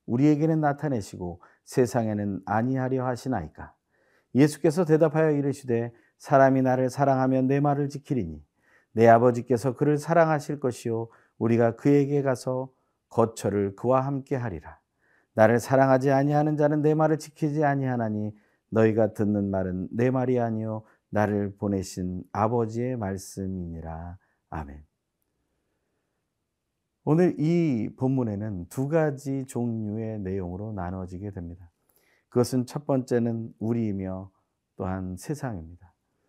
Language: Korean